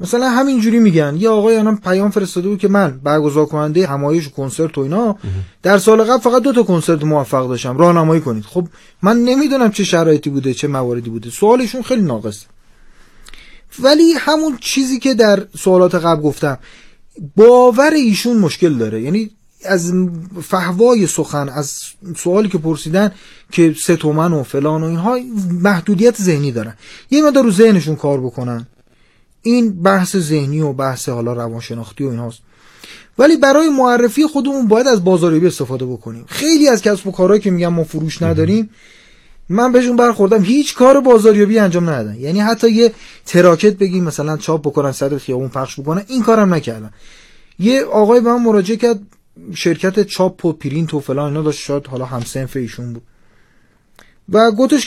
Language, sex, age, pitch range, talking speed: Persian, male, 30-49, 145-230 Hz, 165 wpm